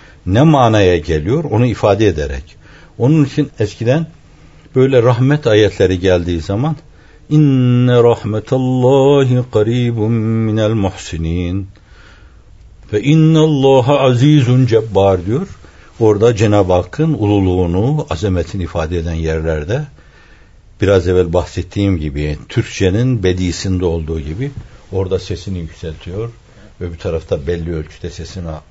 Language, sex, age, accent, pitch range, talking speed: Turkish, male, 60-79, native, 90-125 Hz, 105 wpm